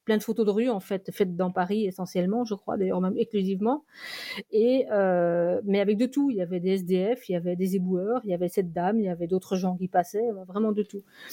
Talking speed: 250 wpm